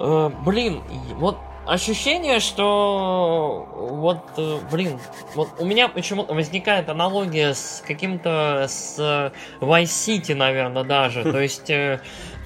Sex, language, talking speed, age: male, Russian, 100 wpm, 20-39